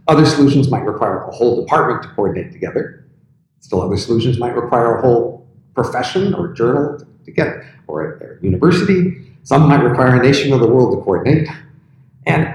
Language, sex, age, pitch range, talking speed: English, male, 50-69, 115-150 Hz, 165 wpm